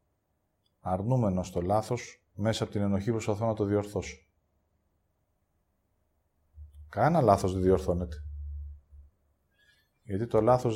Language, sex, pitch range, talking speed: English, male, 85-115 Hz, 105 wpm